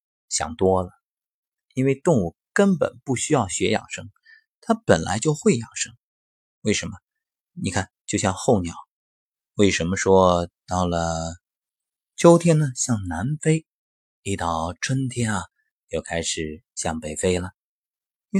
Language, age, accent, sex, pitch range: Chinese, 30-49, native, male, 90-150 Hz